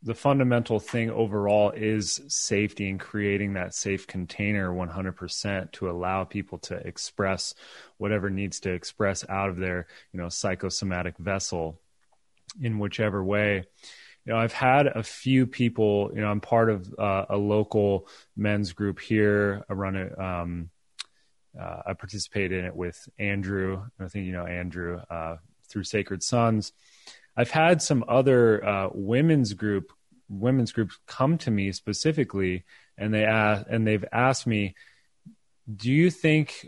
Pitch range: 95-115 Hz